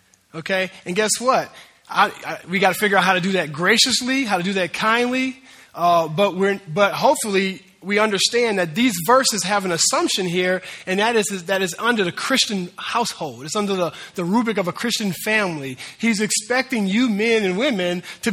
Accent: American